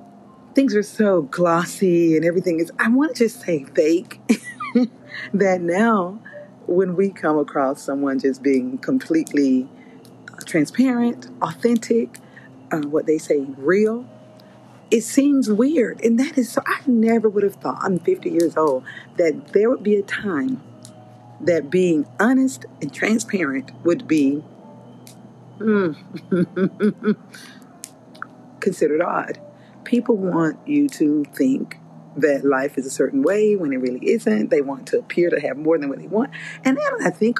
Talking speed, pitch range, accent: 150 wpm, 150-235 Hz, American